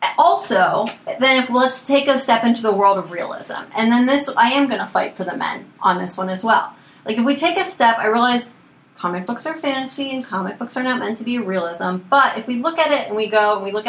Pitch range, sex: 200-260 Hz, female